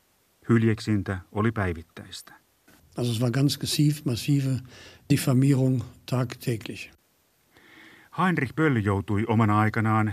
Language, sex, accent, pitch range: Finnish, male, native, 100-120 Hz